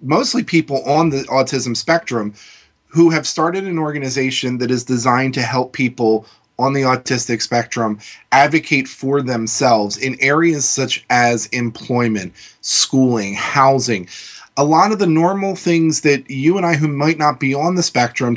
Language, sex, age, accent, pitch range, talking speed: English, male, 30-49, American, 120-150 Hz, 155 wpm